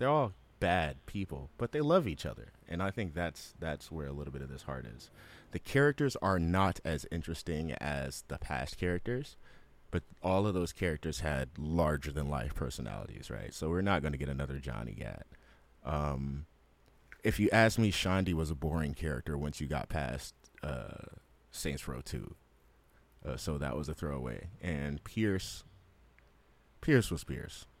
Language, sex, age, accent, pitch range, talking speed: English, male, 30-49, American, 70-95 Hz, 170 wpm